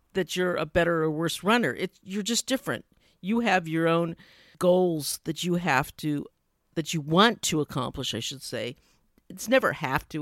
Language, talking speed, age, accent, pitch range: English, 180 wpm, 50-69, American, 165-215 Hz